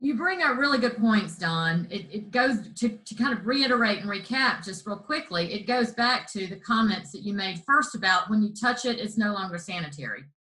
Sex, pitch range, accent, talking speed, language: female, 180-240 Hz, American, 225 wpm, English